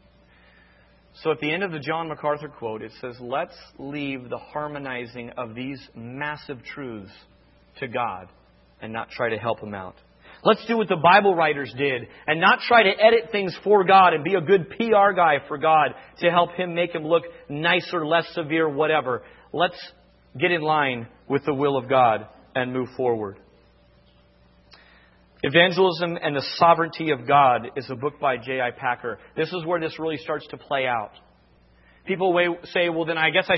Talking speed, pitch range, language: 180 wpm, 130-200 Hz, English